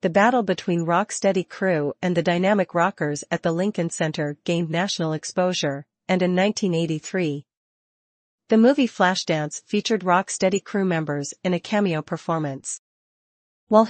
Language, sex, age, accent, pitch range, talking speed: English, female, 40-59, American, 165-200 Hz, 135 wpm